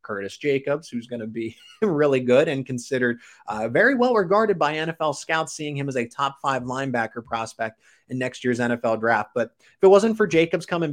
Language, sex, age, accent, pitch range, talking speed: English, male, 30-49, American, 120-160 Hz, 205 wpm